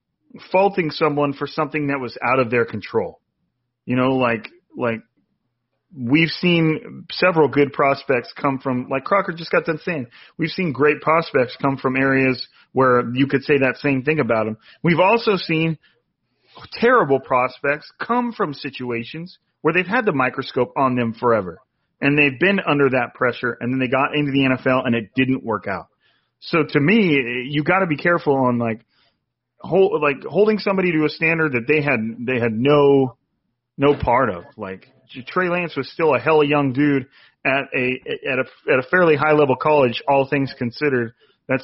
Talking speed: 185 wpm